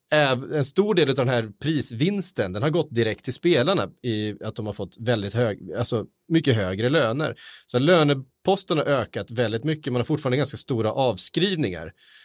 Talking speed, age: 175 wpm, 30-49